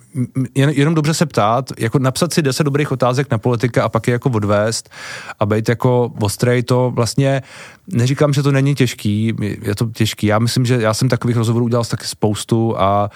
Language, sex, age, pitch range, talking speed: Czech, male, 30-49, 110-130 Hz, 195 wpm